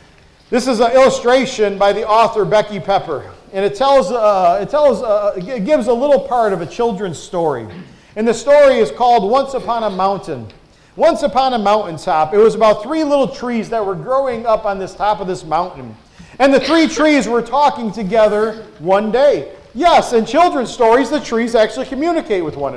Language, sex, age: English, male, 40-59